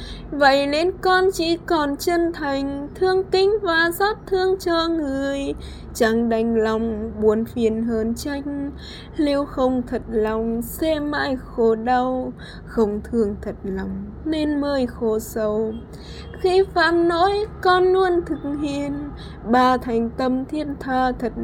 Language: Vietnamese